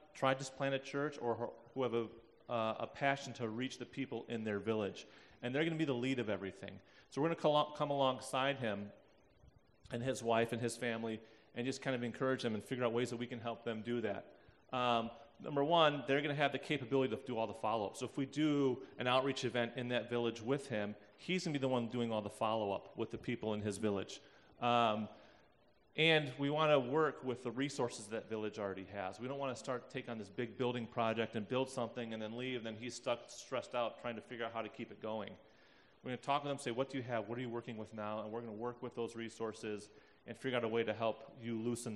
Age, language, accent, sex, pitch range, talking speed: 30-49, English, American, male, 115-135 Hz, 255 wpm